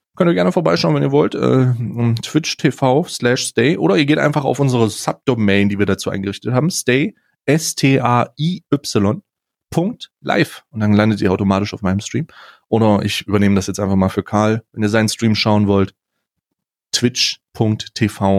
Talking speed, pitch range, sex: 175 wpm, 100-120 Hz, male